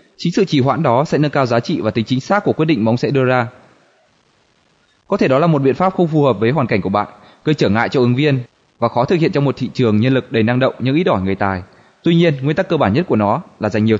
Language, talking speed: Vietnamese, 310 wpm